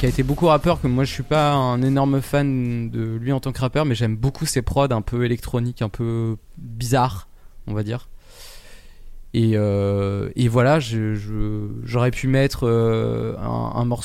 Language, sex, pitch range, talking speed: French, male, 115-135 Hz, 185 wpm